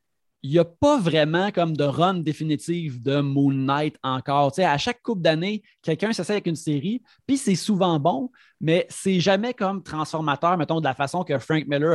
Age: 30-49